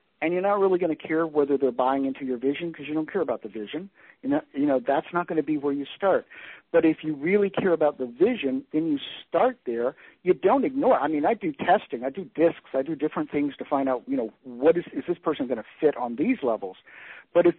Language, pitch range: English, 130-185 Hz